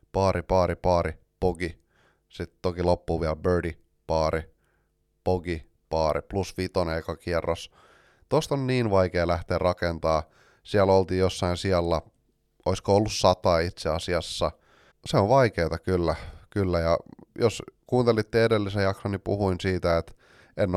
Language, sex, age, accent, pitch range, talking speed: Finnish, male, 30-49, native, 85-100 Hz, 135 wpm